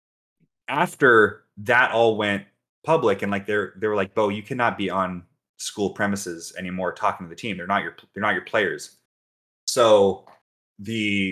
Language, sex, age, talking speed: English, male, 20-39, 170 wpm